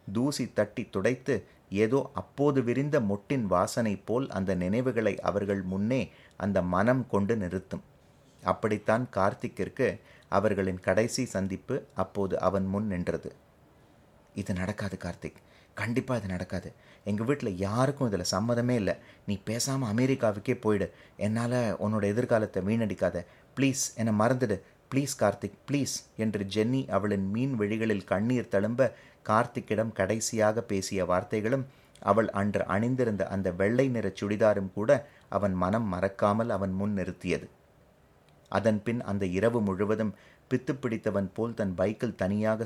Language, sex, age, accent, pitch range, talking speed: Tamil, male, 30-49, native, 95-120 Hz, 125 wpm